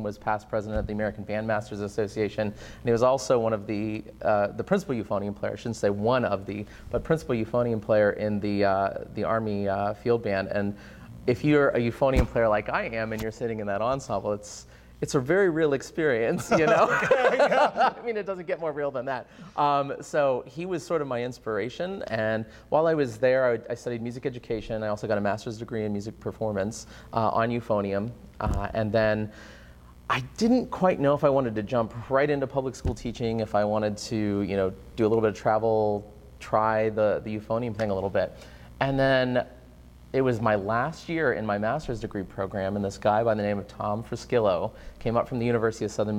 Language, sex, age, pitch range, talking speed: English, male, 30-49, 105-120 Hz, 215 wpm